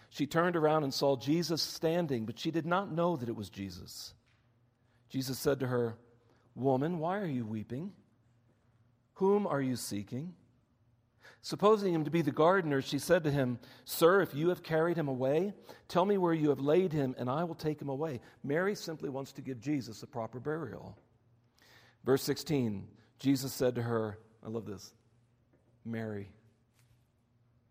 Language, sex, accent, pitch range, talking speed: English, male, American, 115-145 Hz, 170 wpm